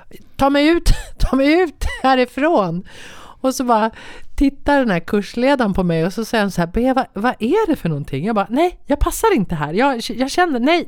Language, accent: Swedish, native